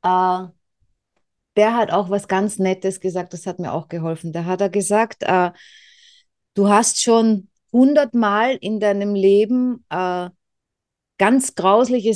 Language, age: German, 30-49